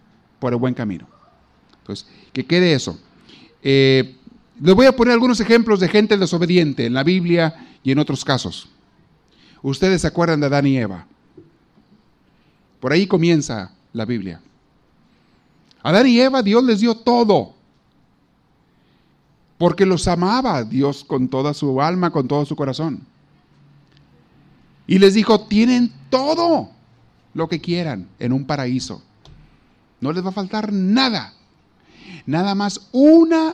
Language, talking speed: Spanish, 140 wpm